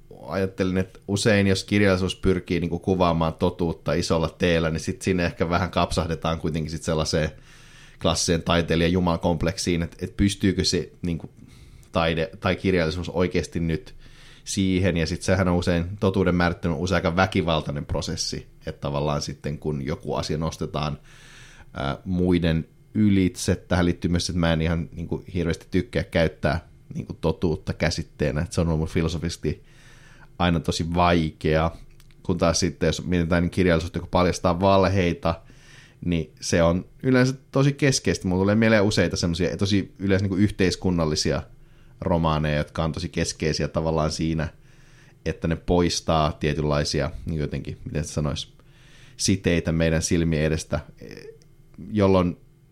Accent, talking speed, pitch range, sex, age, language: native, 145 wpm, 80-95 Hz, male, 30-49, Finnish